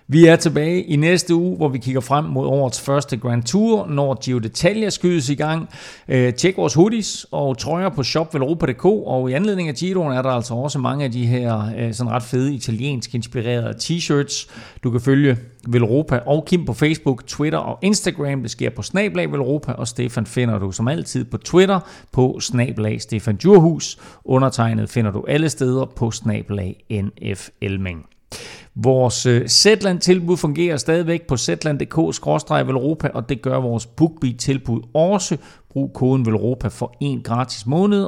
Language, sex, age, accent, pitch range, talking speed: Danish, male, 40-59, native, 115-155 Hz, 165 wpm